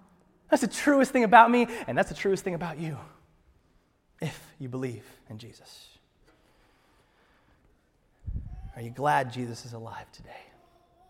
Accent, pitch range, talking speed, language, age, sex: American, 130-200 Hz, 135 wpm, English, 30-49, male